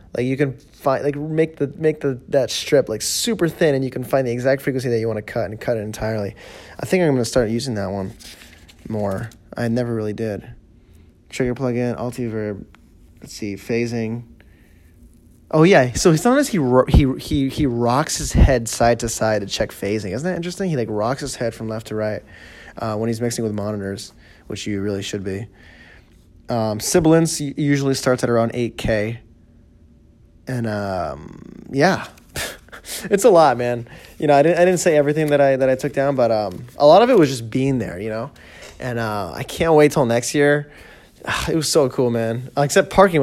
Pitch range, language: 110-140 Hz, English